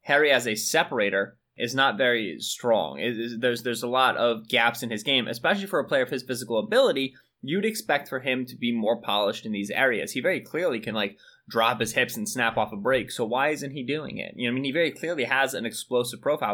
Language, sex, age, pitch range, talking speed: English, male, 20-39, 115-140 Hz, 245 wpm